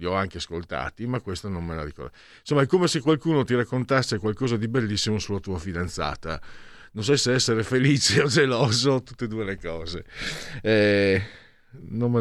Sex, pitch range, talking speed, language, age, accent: male, 95-130 Hz, 180 wpm, Italian, 50-69, native